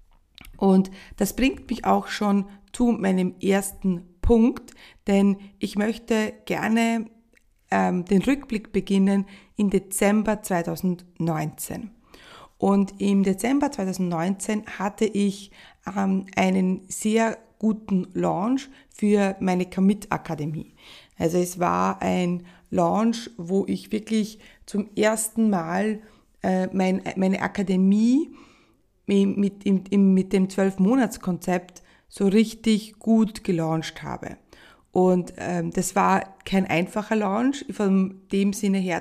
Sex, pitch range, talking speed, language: female, 185-215 Hz, 105 wpm, German